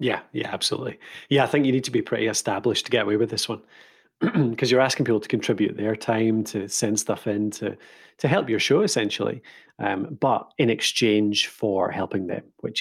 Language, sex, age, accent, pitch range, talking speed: English, male, 40-59, British, 110-155 Hz, 205 wpm